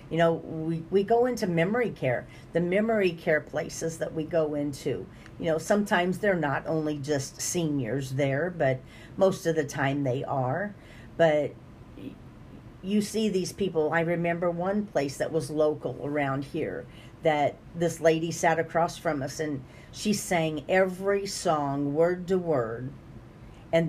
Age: 50-69